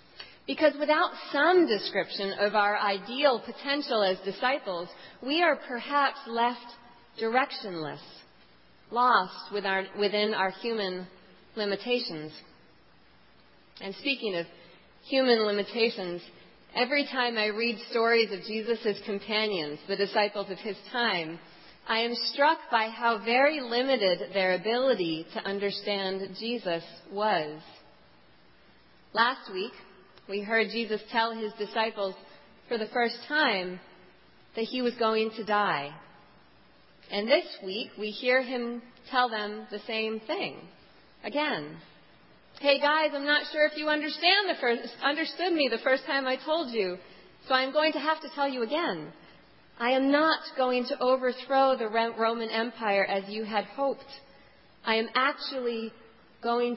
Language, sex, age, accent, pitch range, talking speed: English, female, 40-59, American, 205-260 Hz, 130 wpm